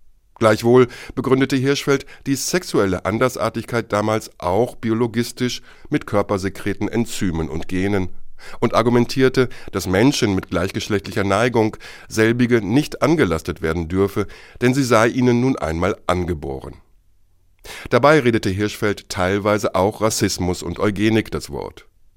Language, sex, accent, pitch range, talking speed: German, male, German, 95-120 Hz, 115 wpm